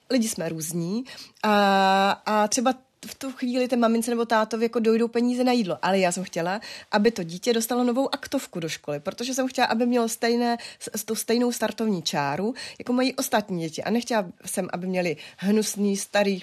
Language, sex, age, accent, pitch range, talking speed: Czech, female, 30-49, native, 185-235 Hz, 195 wpm